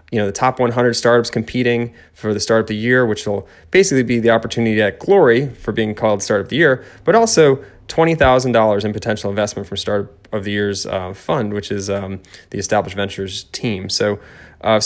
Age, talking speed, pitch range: 20-39, 200 wpm, 105-120 Hz